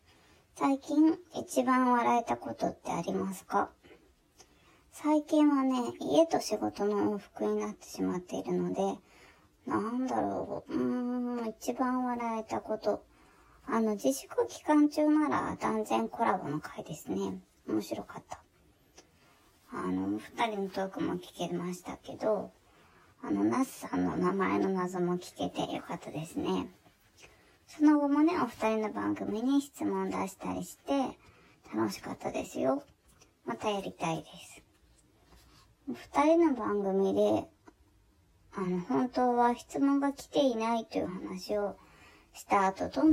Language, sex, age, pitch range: Japanese, male, 20-39, 175-255 Hz